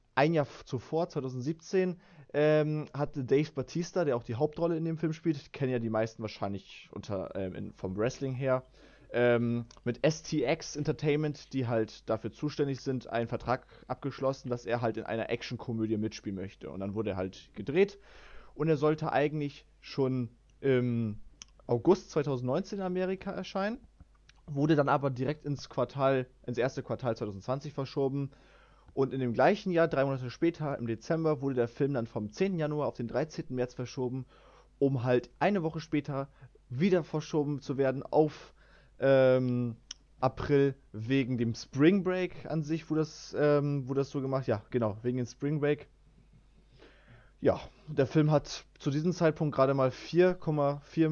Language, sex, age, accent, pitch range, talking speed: German, male, 20-39, German, 125-155 Hz, 160 wpm